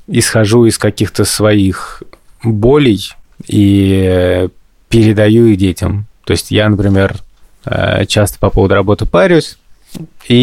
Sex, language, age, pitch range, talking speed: male, Russian, 20-39, 95-115 Hz, 110 wpm